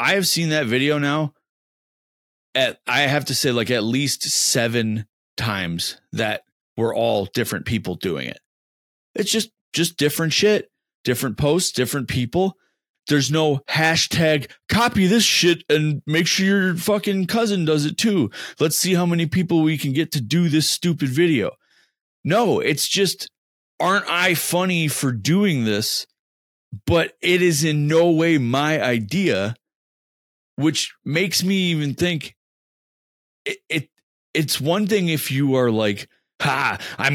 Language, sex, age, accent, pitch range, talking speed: English, male, 30-49, American, 115-170 Hz, 150 wpm